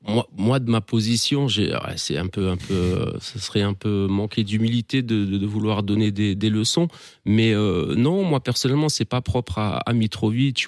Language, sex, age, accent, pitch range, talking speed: French, male, 30-49, French, 100-120 Hz, 170 wpm